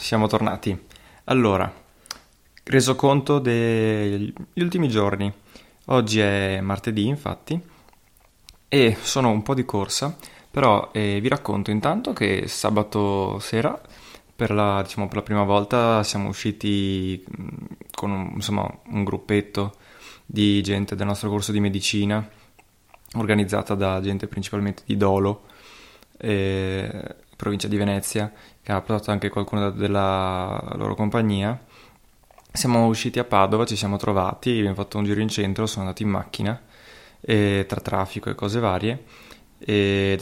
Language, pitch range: Italian, 100-110 Hz